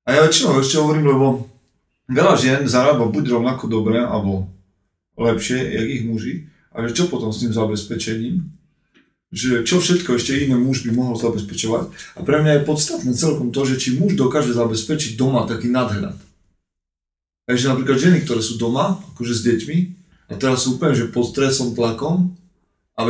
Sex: male